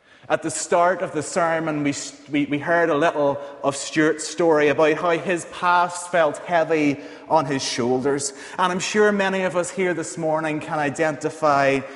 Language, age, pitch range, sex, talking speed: English, 30-49, 140-175 Hz, male, 170 wpm